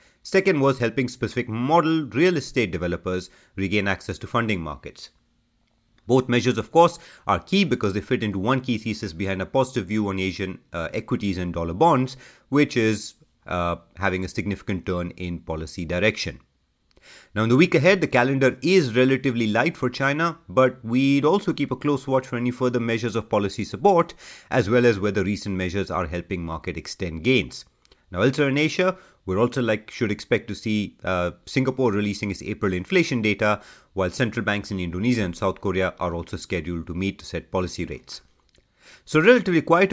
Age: 30-49